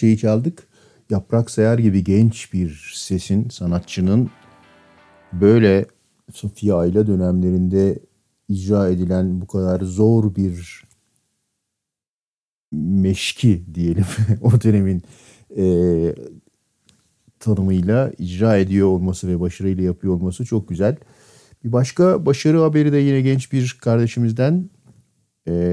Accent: native